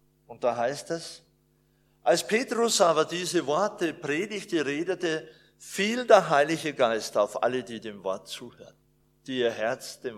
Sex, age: male, 50-69